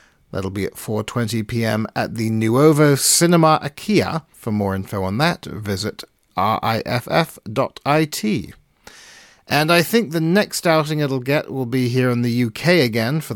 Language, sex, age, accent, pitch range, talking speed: English, male, 40-59, British, 110-150 Hz, 145 wpm